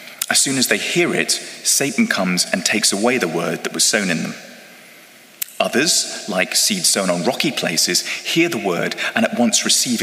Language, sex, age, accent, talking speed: English, male, 30-49, British, 190 wpm